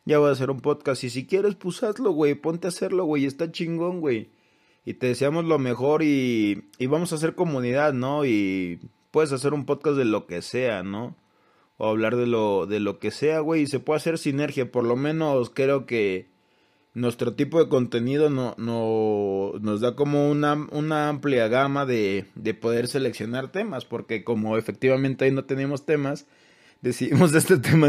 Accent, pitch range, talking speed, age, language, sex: Mexican, 115-145 Hz, 190 wpm, 20-39, Spanish, male